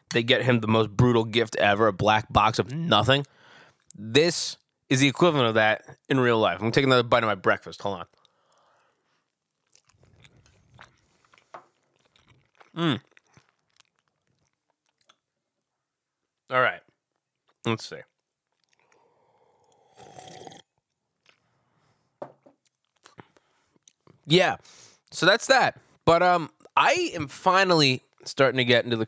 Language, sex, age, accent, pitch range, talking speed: English, male, 20-39, American, 115-155 Hz, 105 wpm